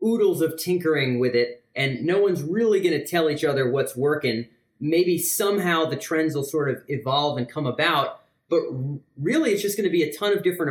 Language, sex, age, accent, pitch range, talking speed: English, male, 30-49, American, 130-175 Hz, 215 wpm